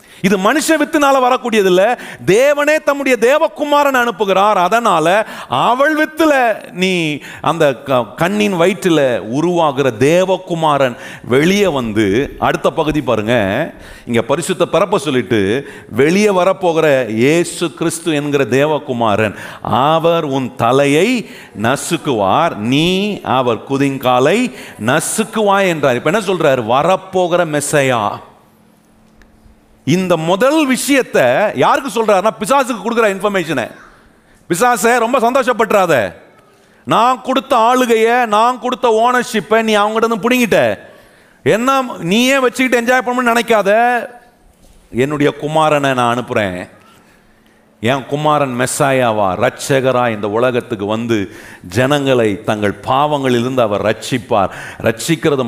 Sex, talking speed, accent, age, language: male, 60 wpm, native, 40-59, Tamil